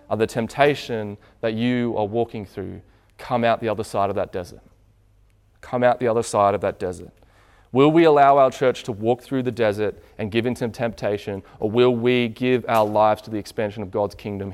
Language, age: English, 20-39